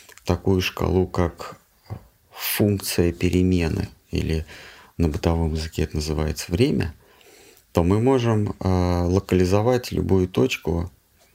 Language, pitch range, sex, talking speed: Russian, 90-105 Hz, male, 95 wpm